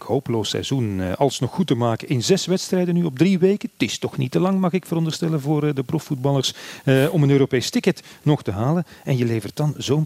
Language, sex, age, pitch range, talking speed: Dutch, male, 40-59, 100-140 Hz, 225 wpm